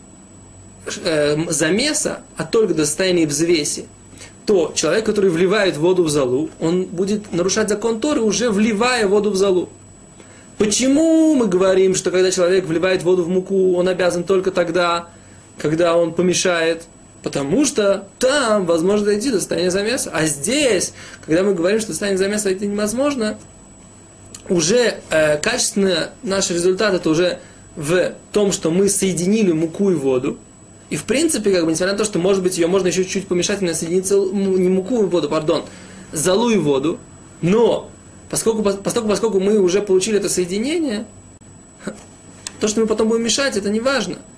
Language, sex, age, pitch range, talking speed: Russian, male, 20-39, 170-210 Hz, 155 wpm